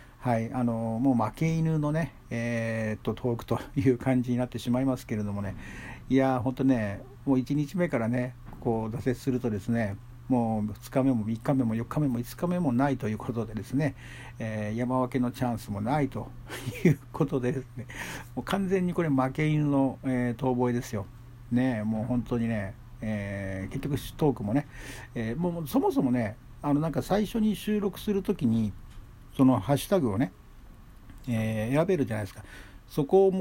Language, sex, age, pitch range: Japanese, male, 60-79, 115-140 Hz